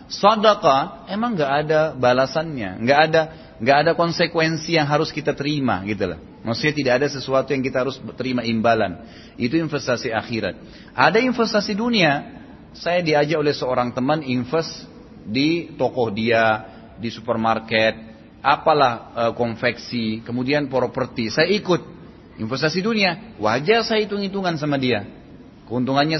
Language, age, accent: Indonesian, 30-49, native